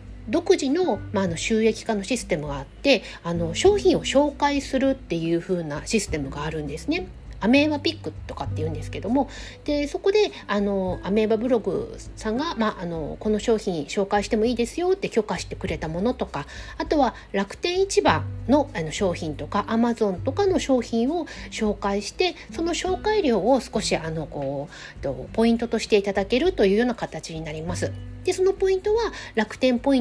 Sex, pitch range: female, 160-260 Hz